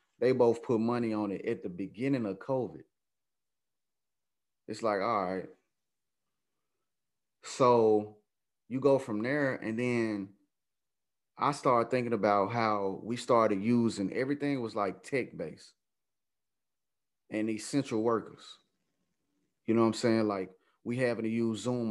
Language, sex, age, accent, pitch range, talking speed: English, male, 30-49, American, 105-125 Hz, 130 wpm